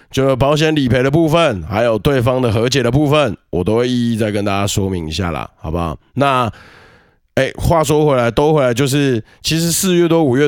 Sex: male